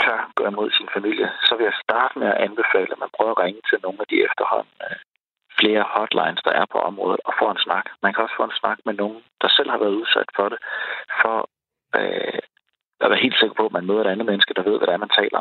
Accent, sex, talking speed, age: native, male, 260 wpm, 30-49